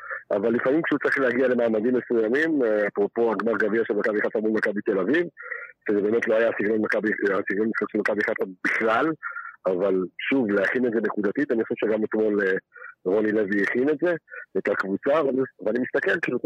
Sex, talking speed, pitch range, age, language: male, 170 wpm, 110-155 Hz, 50-69, Hebrew